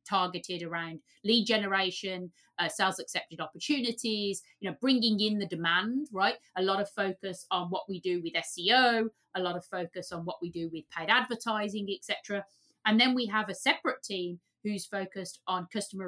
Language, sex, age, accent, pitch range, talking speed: English, female, 30-49, British, 185-230 Hz, 180 wpm